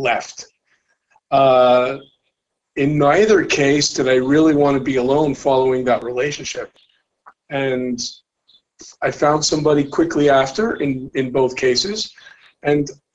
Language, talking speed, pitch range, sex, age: English, 120 wpm, 135-165 Hz, male, 50-69